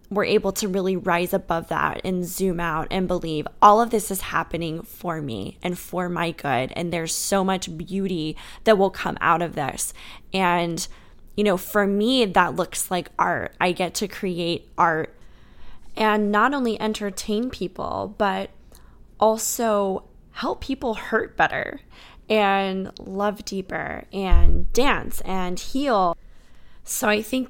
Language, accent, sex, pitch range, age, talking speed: English, American, female, 180-215 Hz, 10-29, 150 wpm